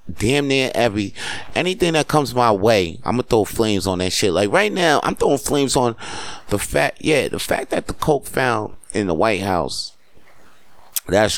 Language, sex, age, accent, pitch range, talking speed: English, male, 30-49, American, 90-120 Hz, 190 wpm